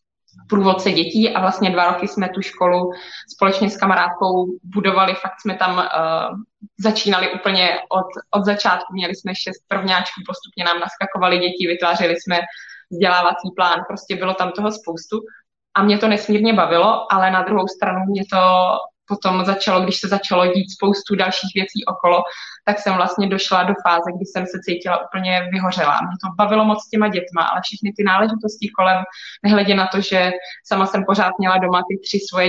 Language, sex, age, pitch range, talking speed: Czech, female, 20-39, 185-200 Hz, 175 wpm